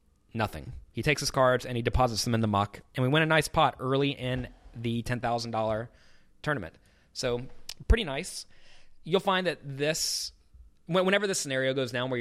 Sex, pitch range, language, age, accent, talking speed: male, 110-140 Hz, English, 20-39, American, 175 wpm